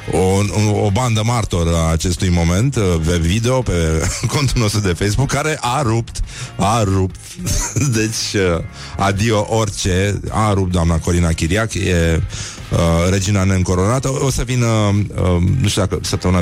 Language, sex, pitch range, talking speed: Romanian, male, 85-120 Hz, 135 wpm